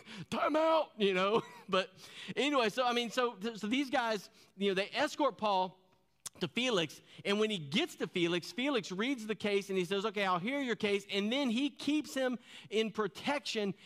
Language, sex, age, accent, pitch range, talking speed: English, male, 40-59, American, 155-225 Hz, 195 wpm